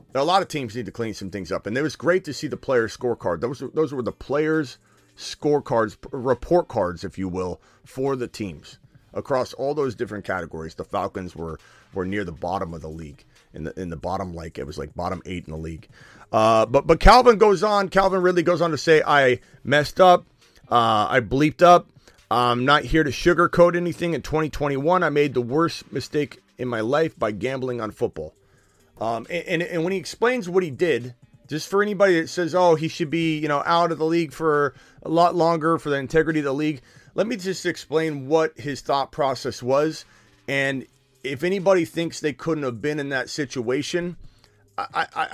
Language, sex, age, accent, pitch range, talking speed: English, male, 30-49, American, 115-165 Hz, 210 wpm